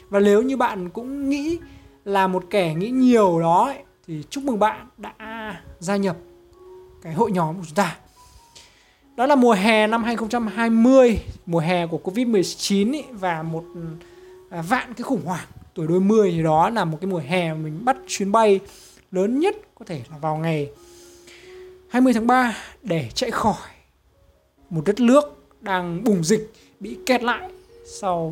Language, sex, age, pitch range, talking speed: Vietnamese, male, 20-39, 170-245 Hz, 165 wpm